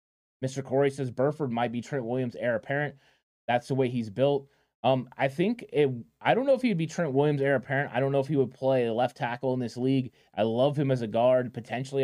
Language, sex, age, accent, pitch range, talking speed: English, male, 20-39, American, 120-140 Hz, 240 wpm